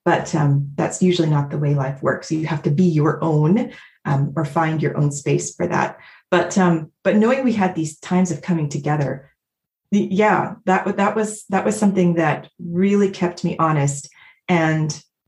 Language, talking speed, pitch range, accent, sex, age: English, 185 wpm, 165-205 Hz, American, female, 30-49